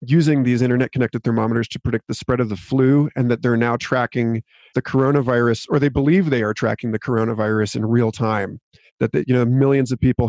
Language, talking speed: English, 215 wpm